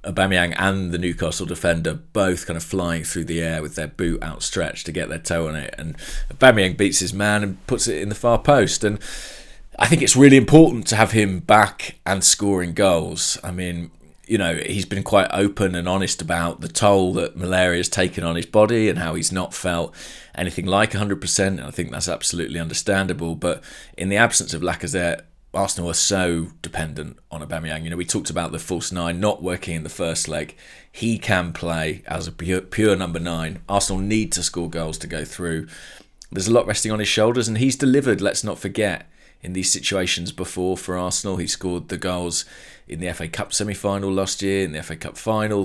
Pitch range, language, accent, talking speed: 85-100 Hz, English, British, 210 wpm